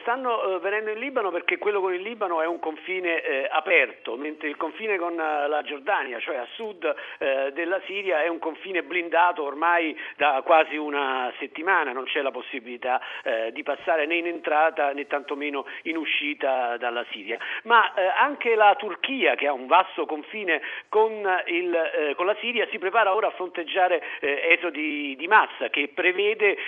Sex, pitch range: male, 155-235 Hz